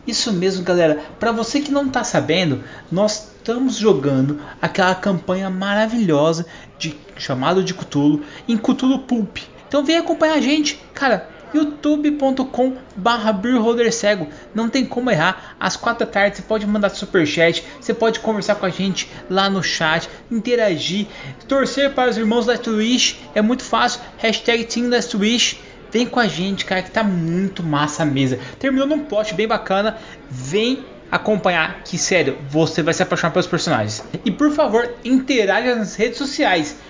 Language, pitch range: Portuguese, 170-235 Hz